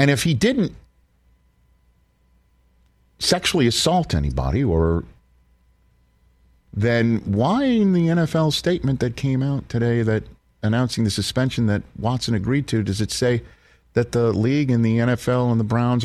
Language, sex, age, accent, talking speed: English, male, 50-69, American, 140 wpm